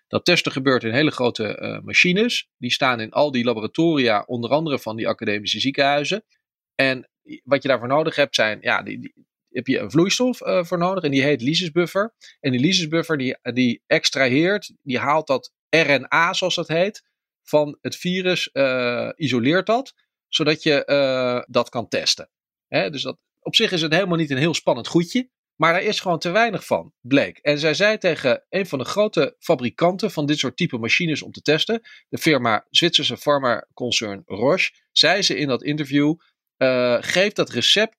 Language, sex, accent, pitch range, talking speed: Dutch, male, Dutch, 130-180 Hz, 190 wpm